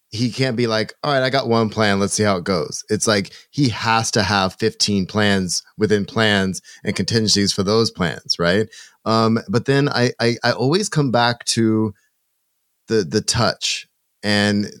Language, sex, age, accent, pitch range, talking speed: English, male, 30-49, American, 100-120 Hz, 180 wpm